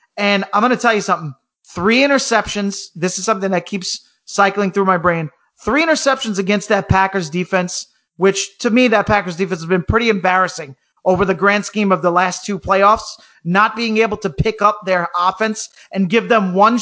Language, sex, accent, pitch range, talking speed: English, male, American, 185-220 Hz, 195 wpm